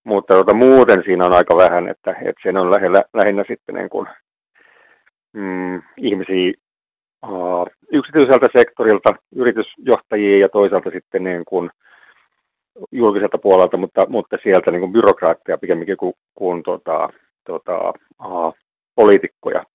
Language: Finnish